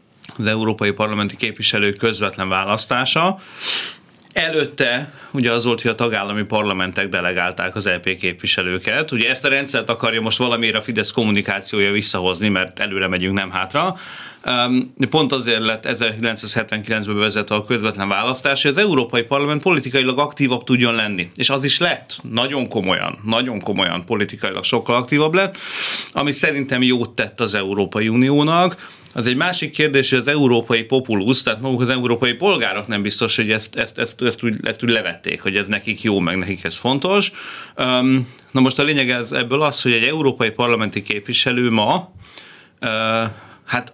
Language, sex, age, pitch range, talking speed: Hungarian, male, 30-49, 105-130 Hz, 150 wpm